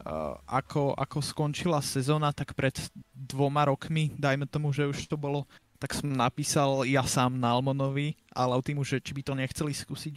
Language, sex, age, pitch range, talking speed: Slovak, male, 20-39, 135-150 Hz, 185 wpm